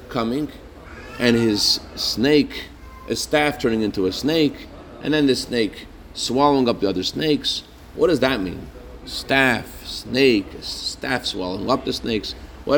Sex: male